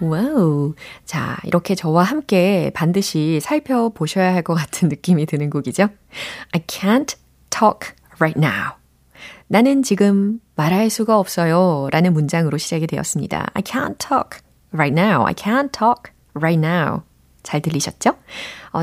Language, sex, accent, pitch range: Korean, female, native, 155-210 Hz